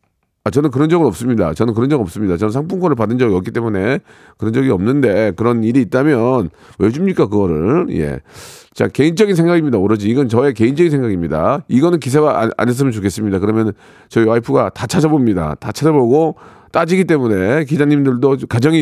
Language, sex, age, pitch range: Korean, male, 40-59, 100-155 Hz